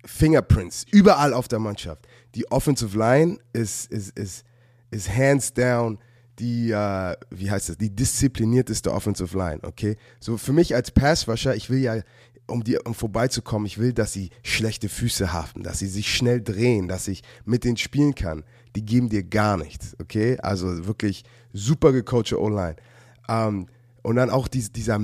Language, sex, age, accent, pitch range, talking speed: German, male, 20-39, German, 105-125 Hz, 170 wpm